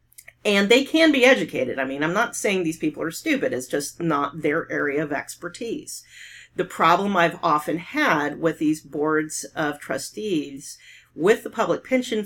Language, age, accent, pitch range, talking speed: English, 40-59, American, 155-215 Hz, 170 wpm